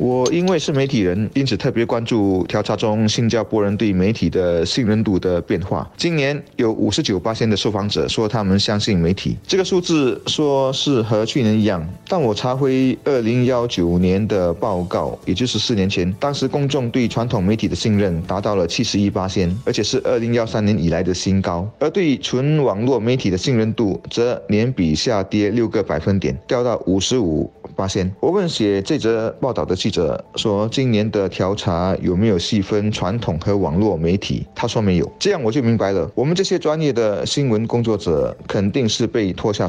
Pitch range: 95-125 Hz